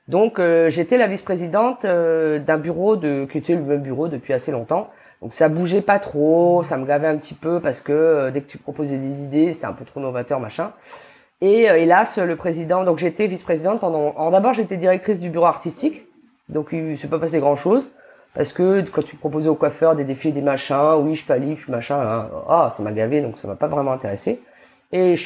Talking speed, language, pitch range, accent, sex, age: 225 wpm, French, 155-195 Hz, French, female, 30-49